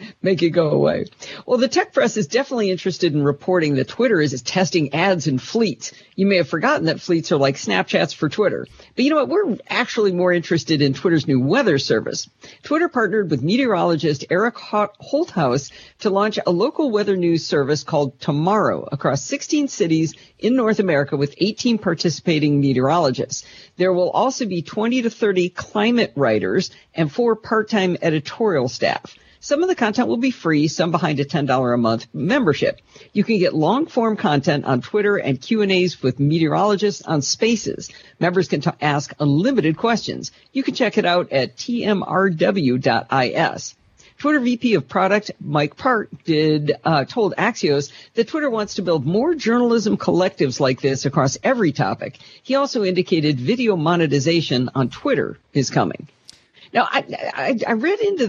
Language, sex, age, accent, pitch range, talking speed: English, female, 50-69, American, 150-225 Hz, 165 wpm